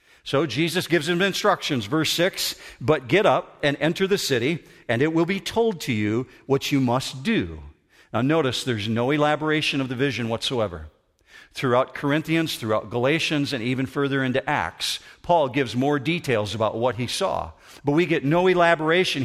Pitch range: 125-165 Hz